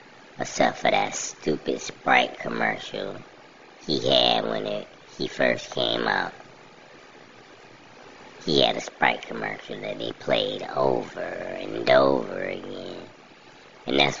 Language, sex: English, male